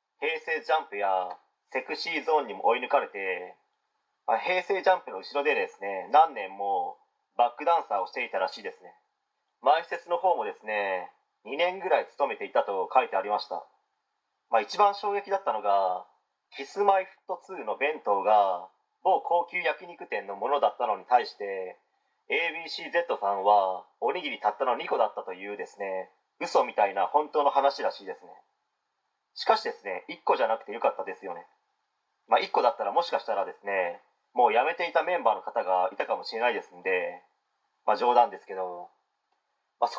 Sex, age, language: male, 30-49, Japanese